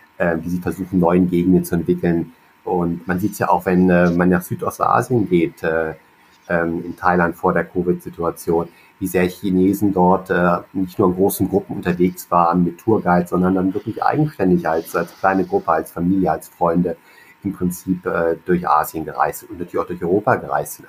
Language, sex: German, male